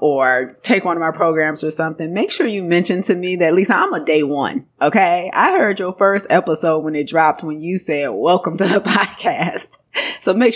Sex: female